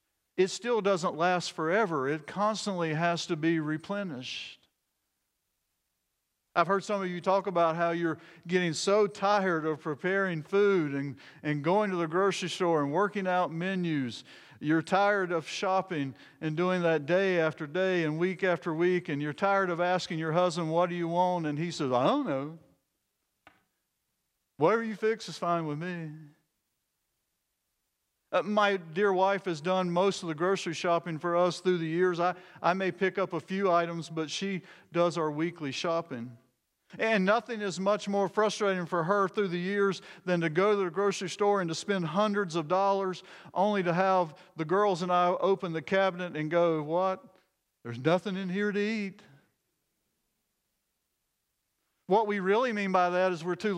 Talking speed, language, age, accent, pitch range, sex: 175 wpm, English, 50-69, American, 165-195 Hz, male